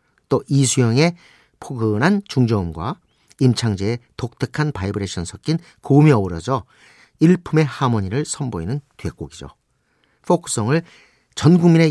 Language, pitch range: Korean, 100-140 Hz